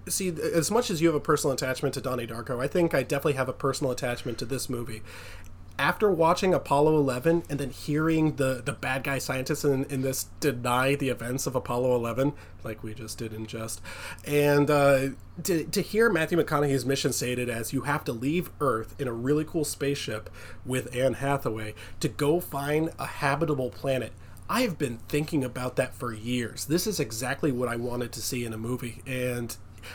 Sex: male